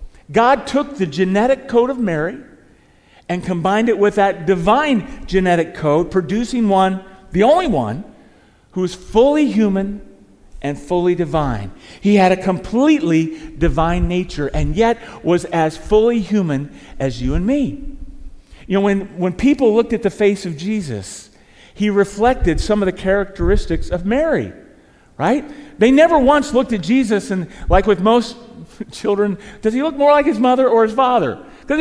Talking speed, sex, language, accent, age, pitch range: 160 wpm, male, English, American, 40-59, 165-225 Hz